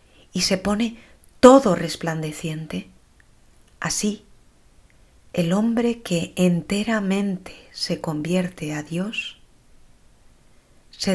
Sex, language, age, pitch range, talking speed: female, Spanish, 30-49, 165-210 Hz, 80 wpm